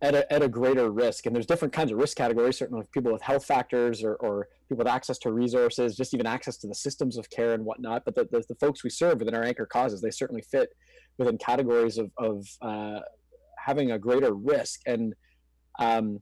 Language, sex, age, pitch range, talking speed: English, male, 20-39, 115-145 Hz, 220 wpm